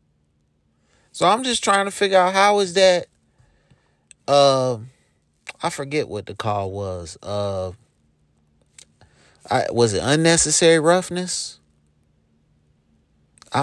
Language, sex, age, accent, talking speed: English, male, 30-49, American, 105 wpm